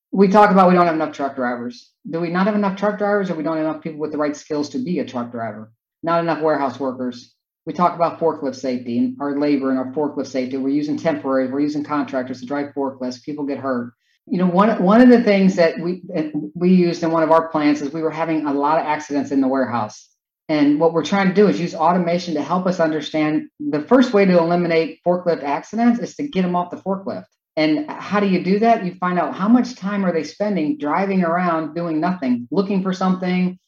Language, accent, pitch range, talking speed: English, American, 145-180 Hz, 240 wpm